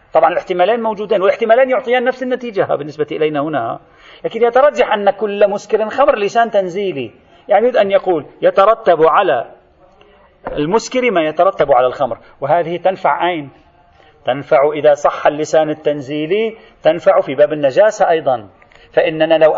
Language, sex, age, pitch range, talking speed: Arabic, male, 40-59, 160-225 Hz, 135 wpm